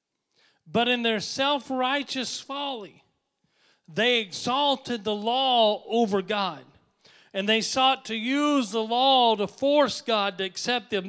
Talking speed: 130 wpm